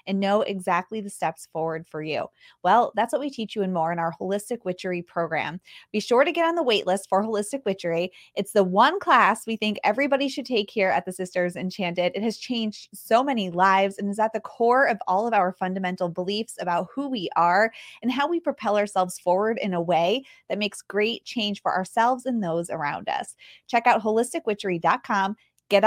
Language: English